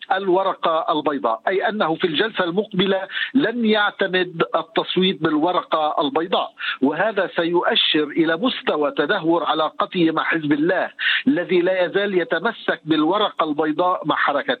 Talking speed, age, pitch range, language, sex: 120 wpm, 50-69, 170-220 Hz, Arabic, male